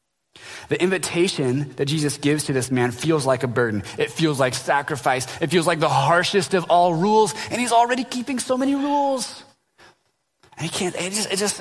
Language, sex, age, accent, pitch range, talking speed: English, male, 20-39, American, 135-185 Hz, 195 wpm